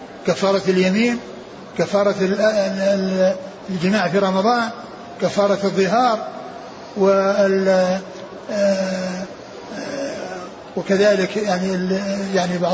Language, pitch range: Arabic, 190-220 Hz